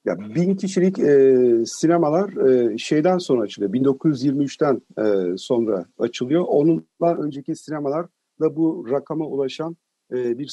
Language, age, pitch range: Turkish, 50-69, 130-175 Hz